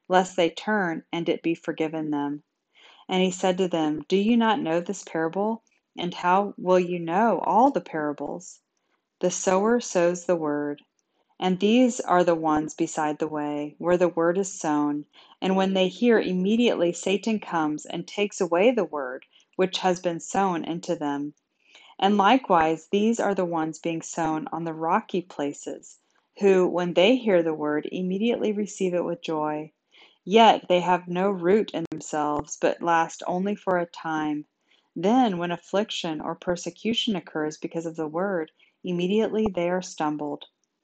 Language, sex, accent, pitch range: English, female, American, 160-190 Hz